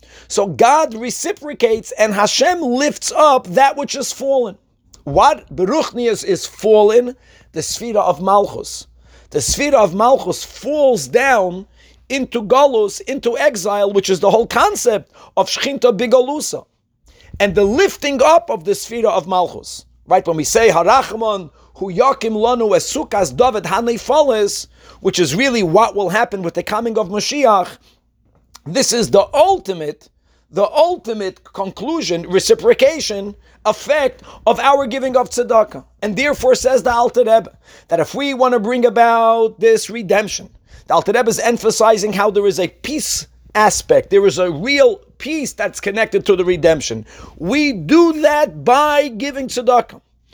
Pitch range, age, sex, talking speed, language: 195-270 Hz, 50-69, male, 150 wpm, English